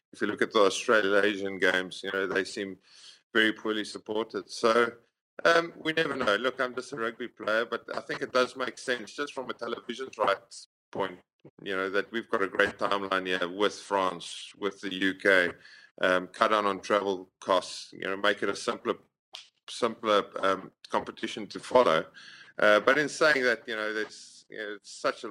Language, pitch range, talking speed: English, 95-120 Hz, 195 wpm